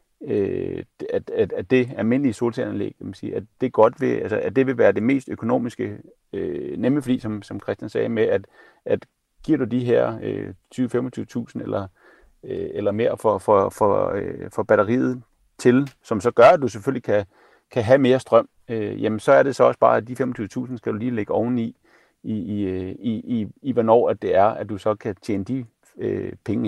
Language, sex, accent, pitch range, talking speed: Danish, male, native, 110-165 Hz, 200 wpm